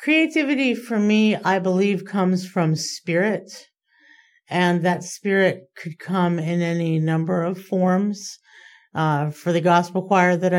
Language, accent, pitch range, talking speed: English, American, 155-190 Hz, 135 wpm